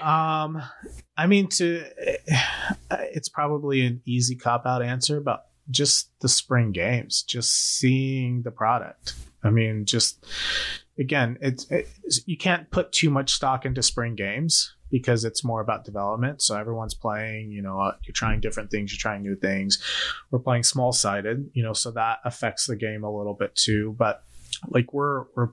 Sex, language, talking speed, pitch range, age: male, English, 165 wpm, 105-125 Hz, 30-49